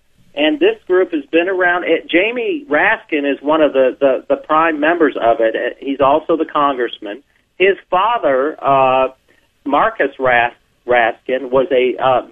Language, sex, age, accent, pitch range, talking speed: English, male, 40-59, American, 130-190 Hz, 150 wpm